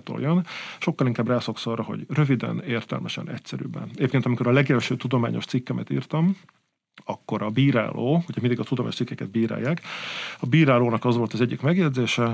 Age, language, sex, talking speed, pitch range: 50-69, Hungarian, male, 155 wpm, 120-145 Hz